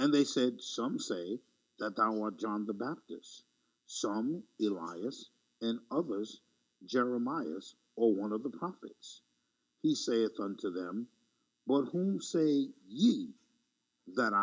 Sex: male